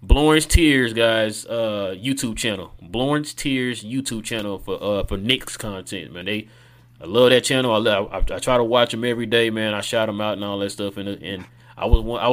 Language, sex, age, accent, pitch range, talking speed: English, male, 30-49, American, 110-130 Hz, 225 wpm